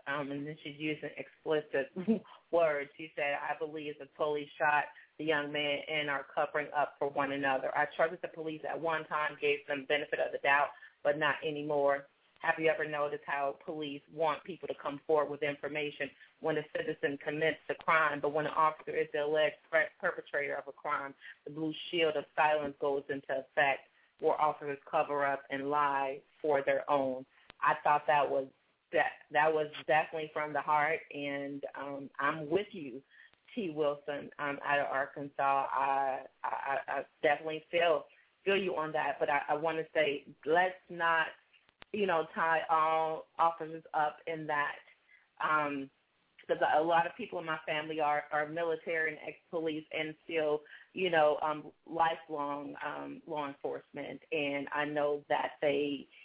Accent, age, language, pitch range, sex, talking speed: American, 30-49, English, 145-160 Hz, female, 175 wpm